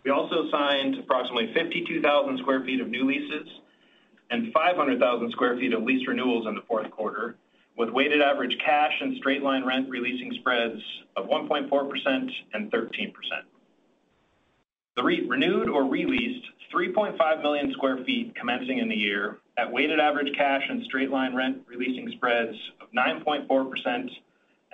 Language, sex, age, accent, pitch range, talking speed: English, male, 30-49, American, 130-155 Hz, 140 wpm